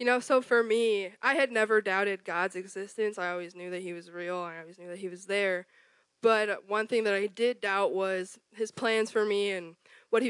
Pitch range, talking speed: 185-220 Hz, 235 wpm